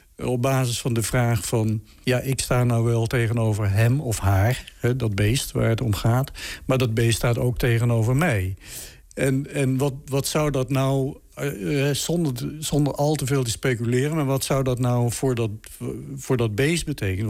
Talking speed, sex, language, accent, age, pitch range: 180 wpm, male, Dutch, Dutch, 60-79, 105-135 Hz